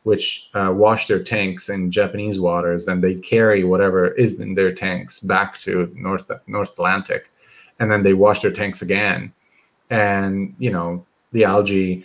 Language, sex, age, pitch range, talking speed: Romanian, male, 30-49, 90-105 Hz, 165 wpm